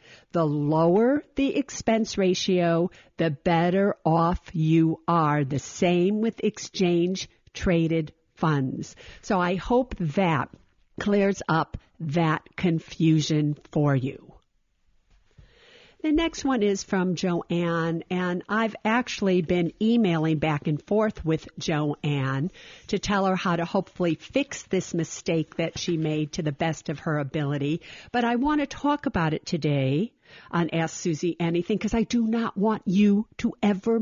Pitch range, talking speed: 160-210 Hz, 140 wpm